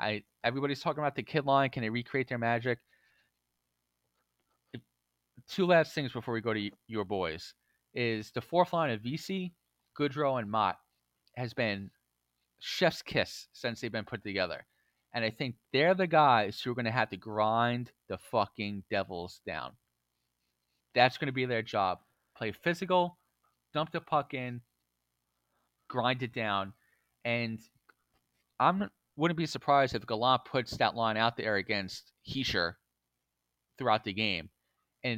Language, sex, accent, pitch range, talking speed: English, male, American, 95-135 Hz, 150 wpm